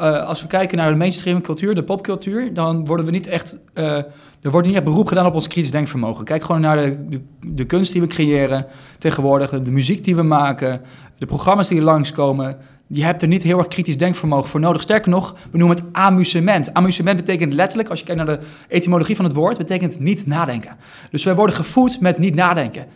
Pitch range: 155-200 Hz